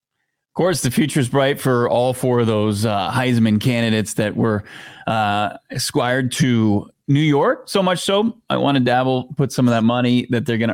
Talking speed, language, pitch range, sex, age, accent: 200 wpm, English, 120-155 Hz, male, 30-49, American